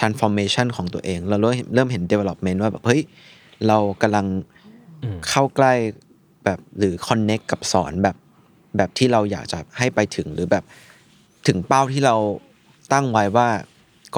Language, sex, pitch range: Thai, male, 95-115 Hz